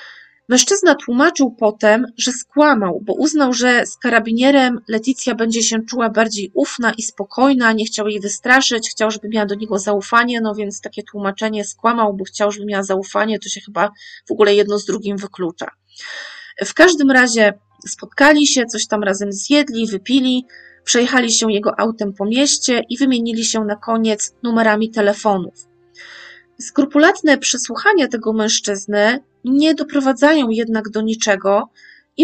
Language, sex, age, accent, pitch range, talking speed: Polish, female, 20-39, native, 205-255 Hz, 150 wpm